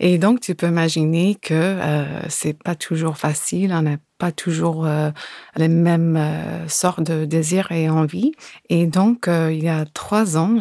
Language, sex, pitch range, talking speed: French, female, 160-190 Hz, 185 wpm